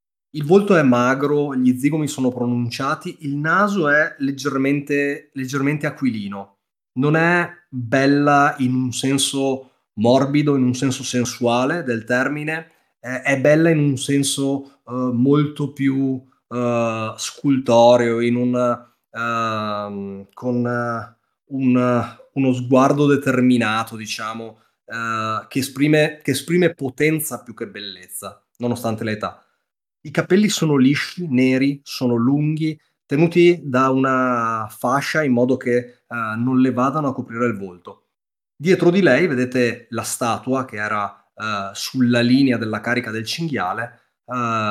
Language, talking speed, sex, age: Italian, 125 wpm, male, 30-49